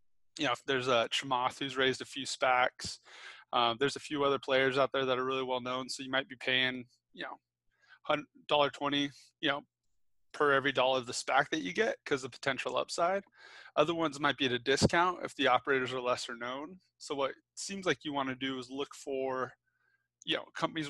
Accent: American